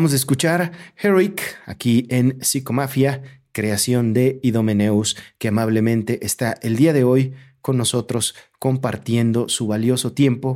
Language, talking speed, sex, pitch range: Spanish, 130 wpm, male, 110-135 Hz